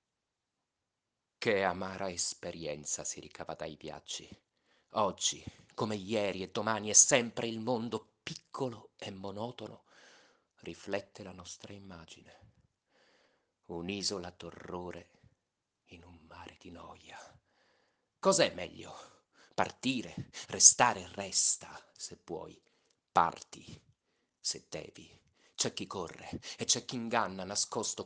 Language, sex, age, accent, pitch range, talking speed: Italian, male, 30-49, native, 100-135 Hz, 105 wpm